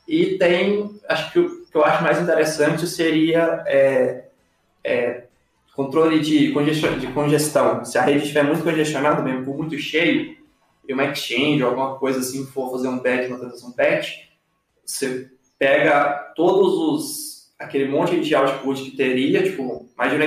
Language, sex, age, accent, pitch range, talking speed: Portuguese, male, 20-39, Brazilian, 135-170 Hz, 150 wpm